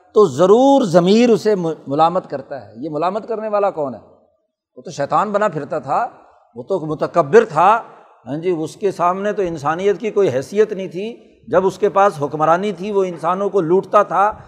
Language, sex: Urdu, male